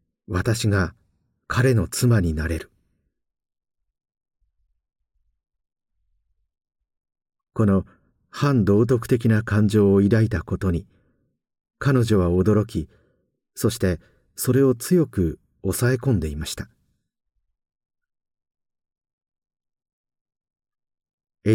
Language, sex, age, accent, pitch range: Japanese, male, 50-69, native, 90-120 Hz